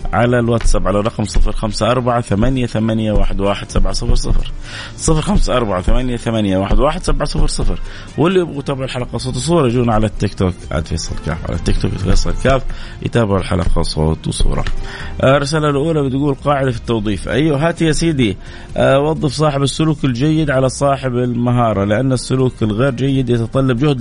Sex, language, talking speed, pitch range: male, Arabic, 130 wpm, 100-135 Hz